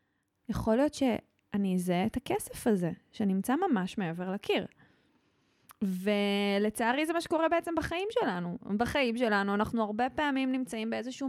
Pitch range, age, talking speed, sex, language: 205-285 Hz, 20-39, 135 wpm, female, Hebrew